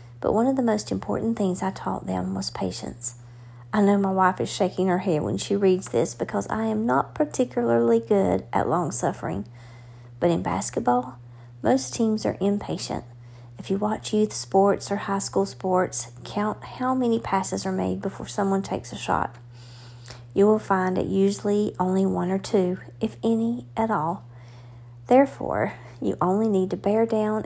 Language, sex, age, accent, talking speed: English, female, 40-59, American, 175 wpm